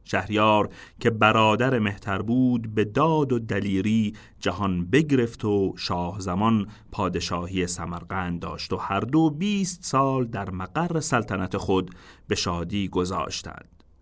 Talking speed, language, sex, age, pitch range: 125 wpm, Persian, male, 40-59, 90-120 Hz